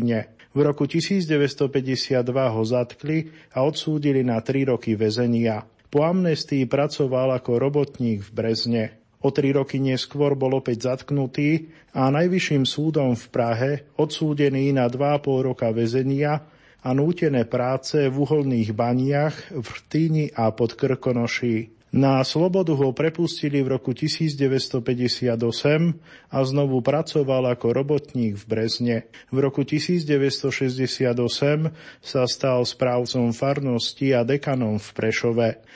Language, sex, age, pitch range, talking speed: Slovak, male, 40-59, 125-145 Hz, 120 wpm